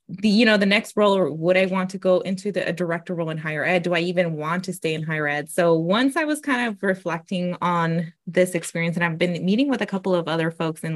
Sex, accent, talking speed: female, American, 255 wpm